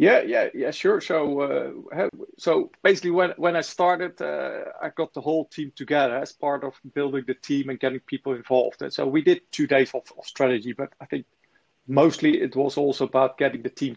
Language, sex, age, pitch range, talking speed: English, male, 40-59, 135-155 Hz, 210 wpm